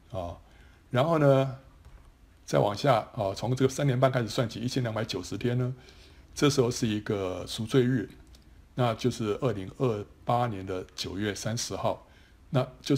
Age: 60-79